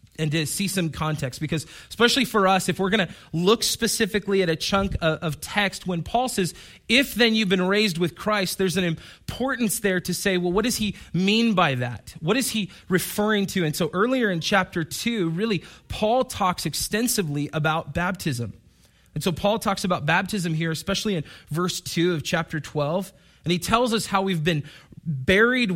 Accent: American